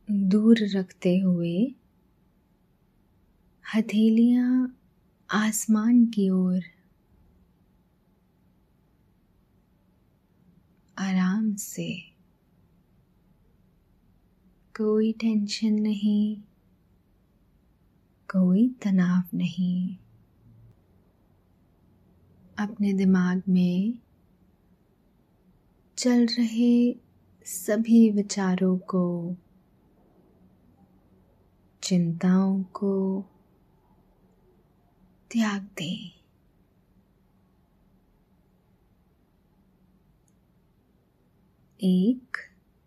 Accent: native